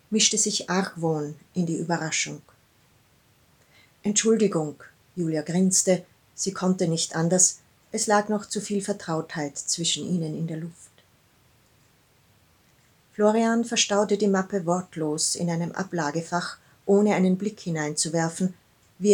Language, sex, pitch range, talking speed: German, female, 160-200 Hz, 115 wpm